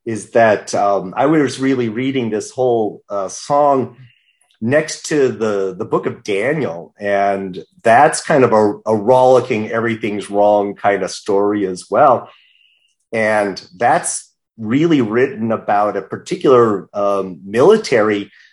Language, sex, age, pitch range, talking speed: English, male, 40-59, 105-130 Hz, 135 wpm